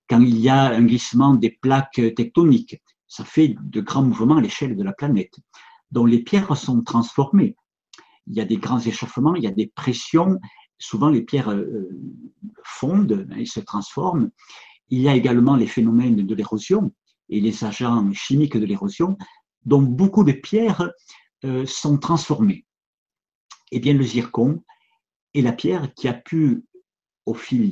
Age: 50-69